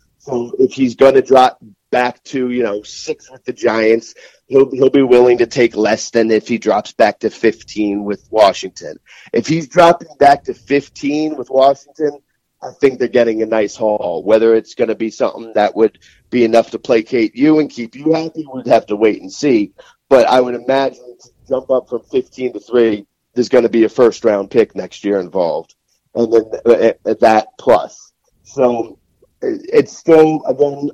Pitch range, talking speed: 115-140 Hz, 195 wpm